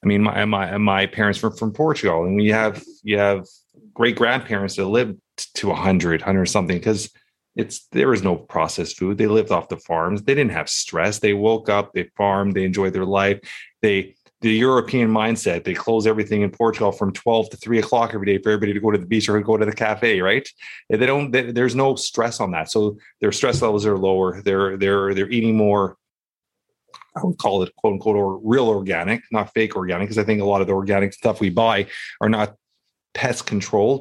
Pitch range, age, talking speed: 100-115 Hz, 30-49, 215 wpm